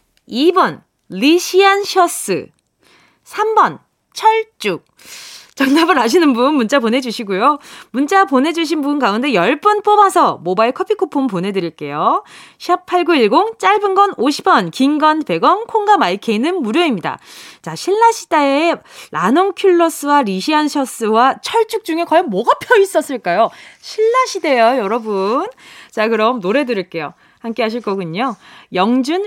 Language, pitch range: Korean, 230-365 Hz